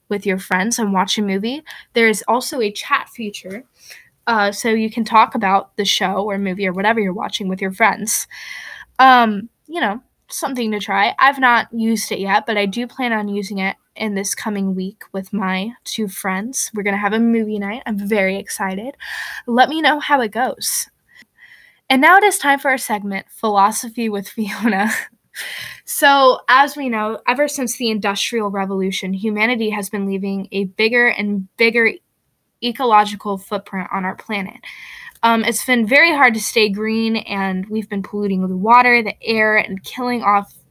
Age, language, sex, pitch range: 10-29, English, female, 200-240 Hz